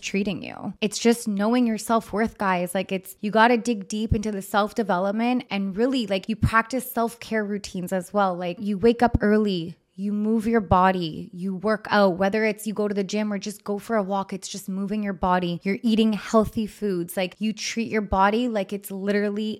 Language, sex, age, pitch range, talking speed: English, female, 20-39, 190-220 Hz, 210 wpm